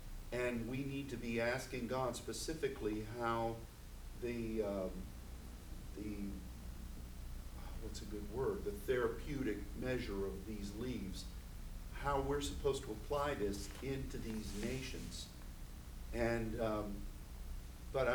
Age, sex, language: 50-69, male, English